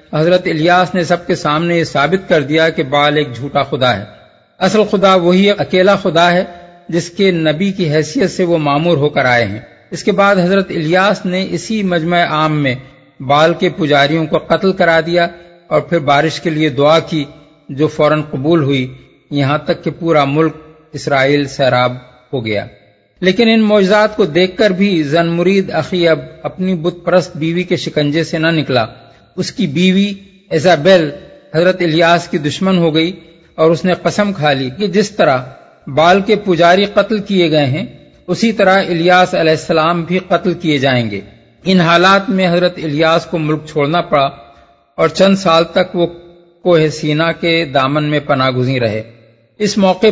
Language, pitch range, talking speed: Urdu, 150-185 Hz, 180 wpm